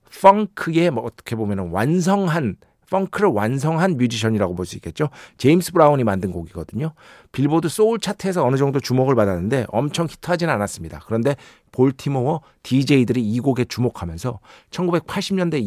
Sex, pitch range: male, 115-170 Hz